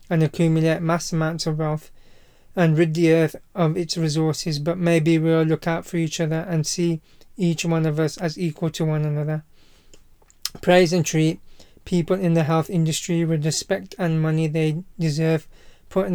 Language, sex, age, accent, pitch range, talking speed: English, male, 30-49, British, 160-170 Hz, 175 wpm